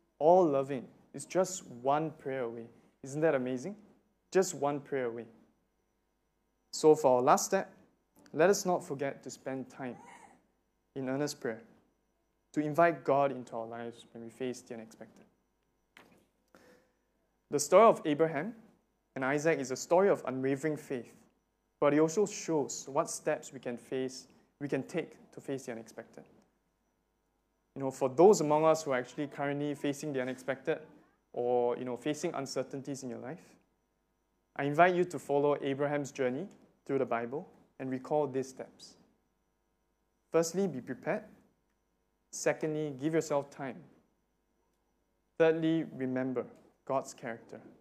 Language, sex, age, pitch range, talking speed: English, male, 20-39, 130-155 Hz, 140 wpm